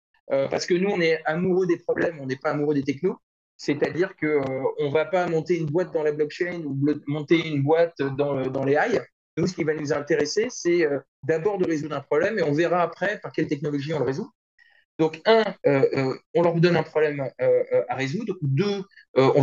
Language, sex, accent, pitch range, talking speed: French, male, French, 150-185 Hz, 220 wpm